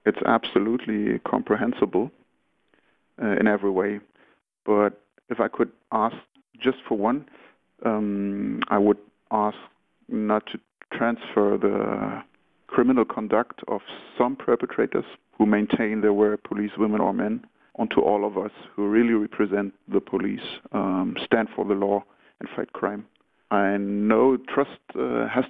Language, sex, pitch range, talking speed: English, male, 100-110 Hz, 135 wpm